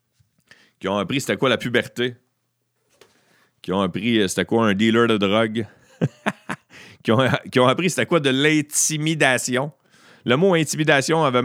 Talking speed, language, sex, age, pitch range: 150 wpm, French, male, 40-59, 90-125 Hz